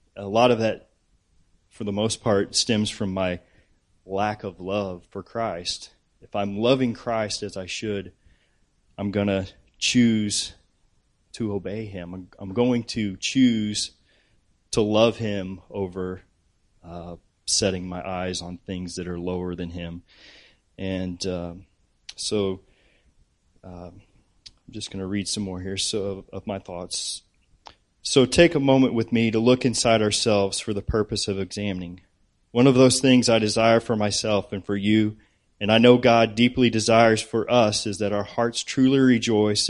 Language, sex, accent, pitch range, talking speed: English, male, American, 95-115 Hz, 160 wpm